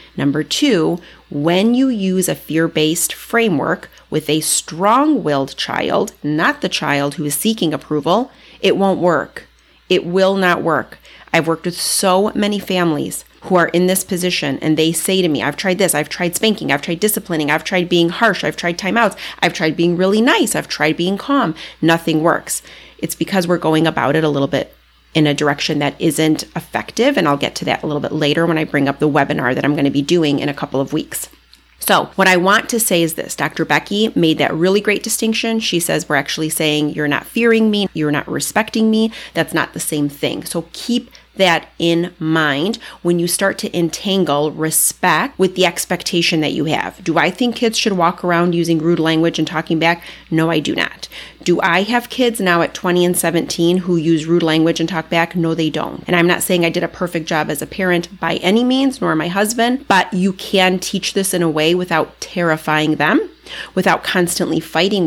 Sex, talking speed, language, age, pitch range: female, 210 wpm, English, 30-49, 155-190 Hz